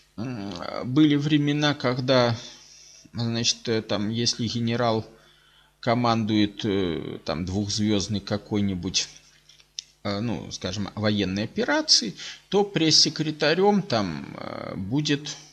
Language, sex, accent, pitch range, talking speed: Russian, male, native, 100-150 Hz, 75 wpm